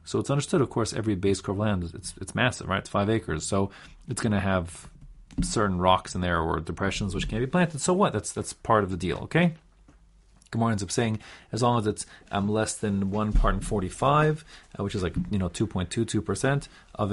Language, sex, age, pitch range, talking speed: English, male, 40-59, 100-135 Hz, 240 wpm